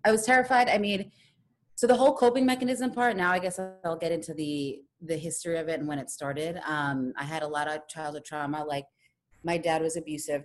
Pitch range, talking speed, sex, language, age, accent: 145-170 Hz, 225 wpm, female, English, 30-49, American